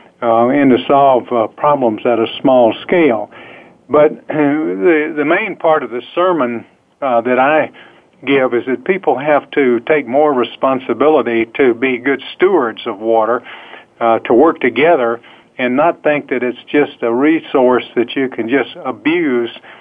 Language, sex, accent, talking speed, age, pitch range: English, male, American, 165 wpm, 50-69, 120-155 Hz